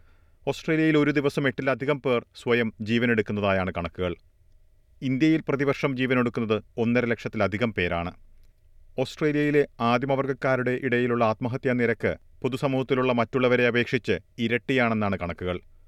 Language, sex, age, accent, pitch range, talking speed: Malayalam, male, 40-59, native, 105-130 Hz, 90 wpm